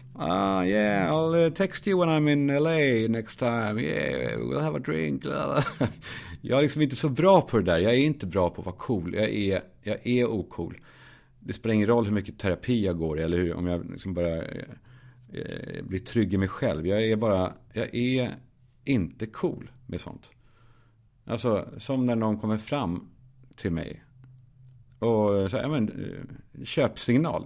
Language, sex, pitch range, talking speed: Swedish, male, 105-130 Hz, 175 wpm